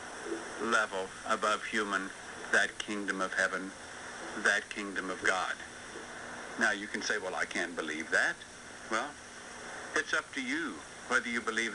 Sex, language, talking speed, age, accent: male, English, 145 wpm, 60-79, American